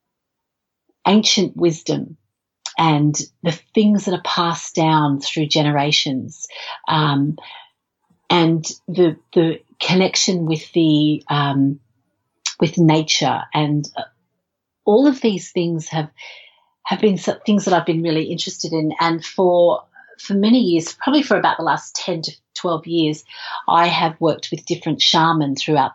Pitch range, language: 145-175 Hz, English